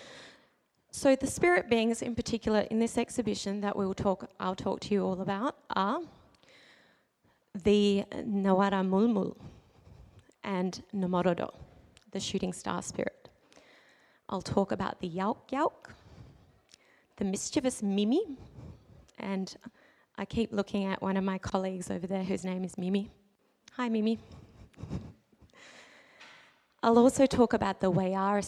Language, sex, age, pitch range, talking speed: English, female, 20-39, 185-230 Hz, 130 wpm